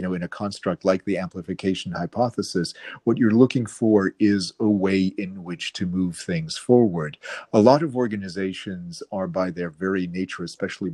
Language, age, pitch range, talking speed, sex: English, 40-59, 90-105 Hz, 175 wpm, male